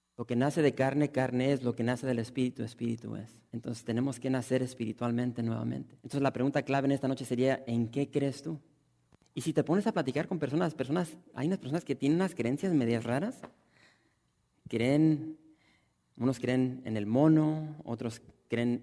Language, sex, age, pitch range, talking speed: English, male, 30-49, 115-135 Hz, 185 wpm